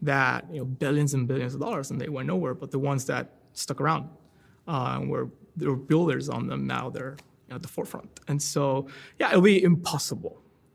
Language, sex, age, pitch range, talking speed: English, male, 20-39, 135-165 Hz, 210 wpm